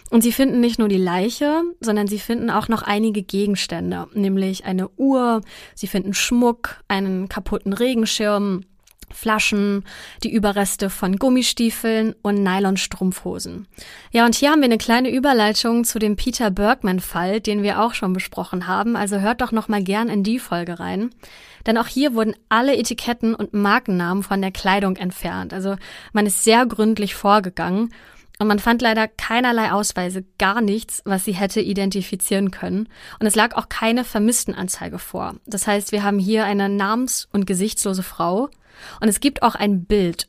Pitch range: 195-230 Hz